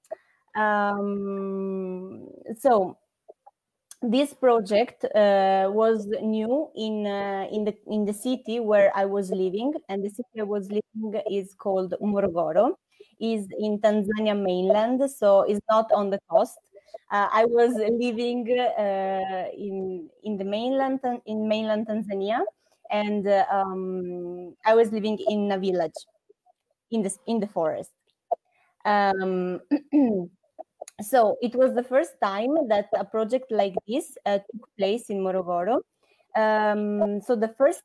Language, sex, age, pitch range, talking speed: Italian, female, 20-39, 200-245 Hz, 135 wpm